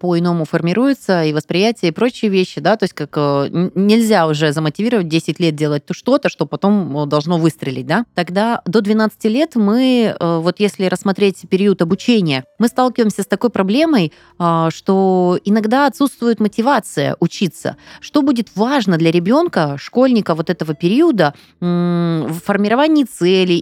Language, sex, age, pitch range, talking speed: Russian, female, 30-49, 165-220 Hz, 140 wpm